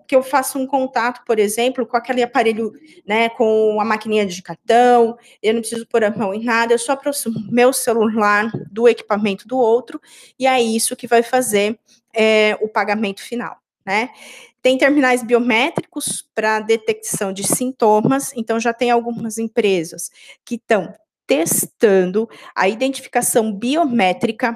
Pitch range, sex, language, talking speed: 210-250 Hz, female, Portuguese, 150 wpm